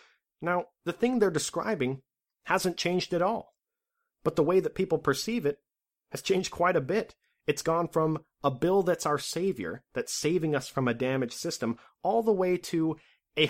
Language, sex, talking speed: English, male, 180 wpm